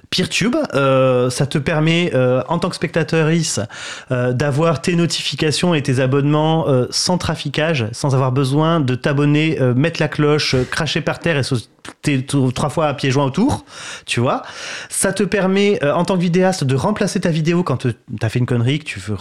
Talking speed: 200 wpm